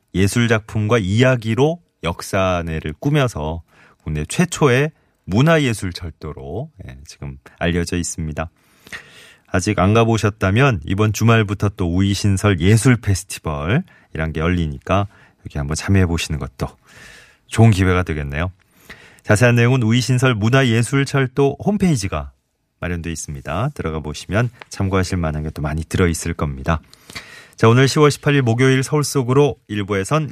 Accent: native